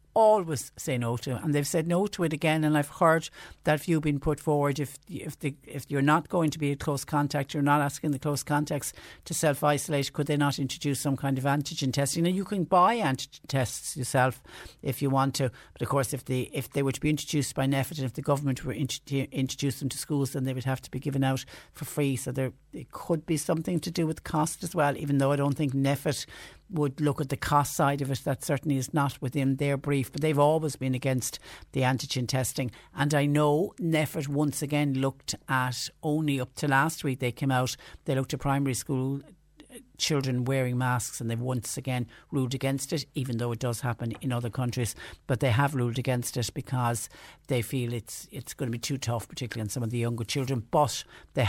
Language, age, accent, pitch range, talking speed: English, 60-79, Irish, 125-150 Hz, 230 wpm